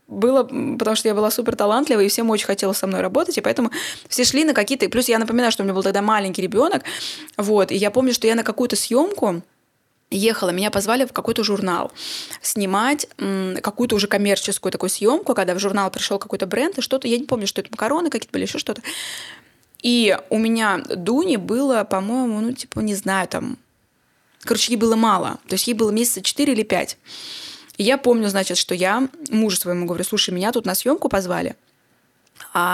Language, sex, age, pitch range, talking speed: Russian, female, 20-39, 190-240 Hz, 195 wpm